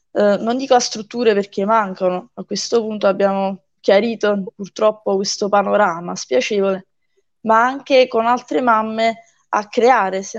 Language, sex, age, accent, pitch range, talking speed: Italian, female, 20-39, native, 200-240 Hz, 135 wpm